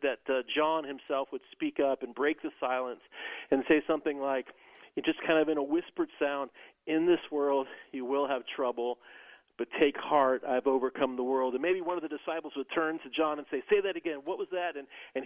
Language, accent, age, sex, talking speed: English, American, 40-59, male, 220 wpm